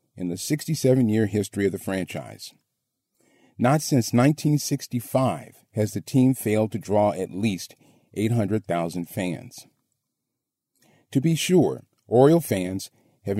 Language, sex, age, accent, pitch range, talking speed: English, male, 40-59, American, 105-140 Hz, 115 wpm